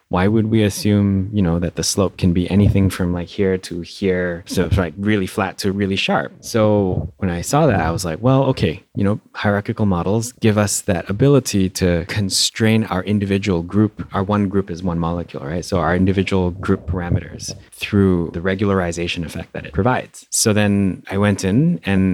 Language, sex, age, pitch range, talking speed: English, male, 30-49, 85-105 Hz, 200 wpm